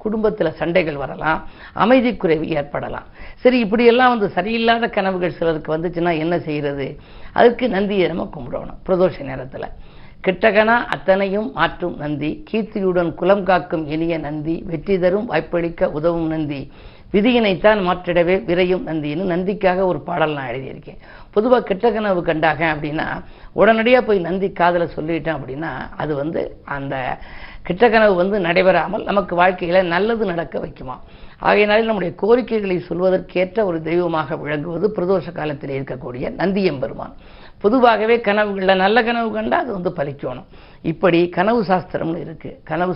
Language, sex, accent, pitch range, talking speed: Tamil, female, native, 160-205 Hz, 125 wpm